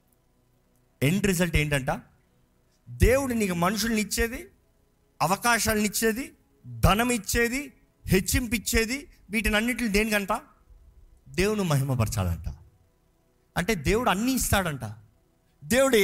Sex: male